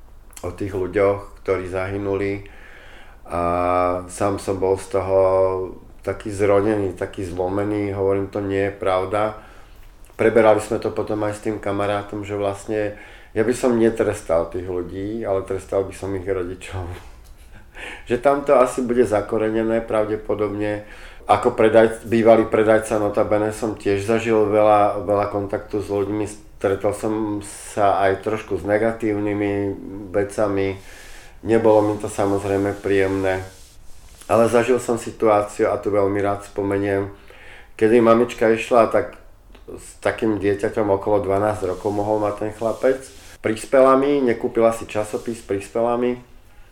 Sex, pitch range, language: male, 100-110 Hz, Slovak